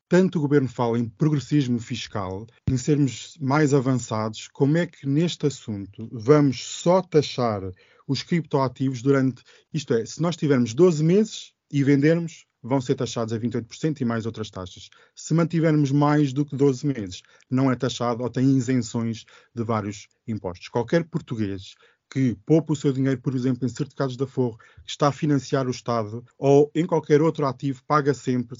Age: 20-39